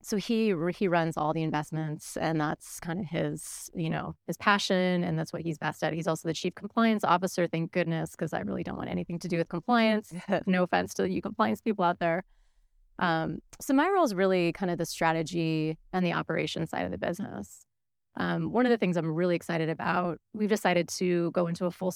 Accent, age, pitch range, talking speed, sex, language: American, 30-49, 165-195 Hz, 220 wpm, female, English